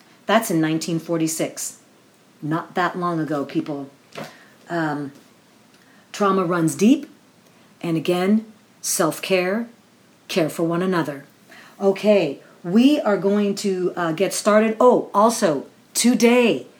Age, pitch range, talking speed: 40-59, 165-210 Hz, 110 wpm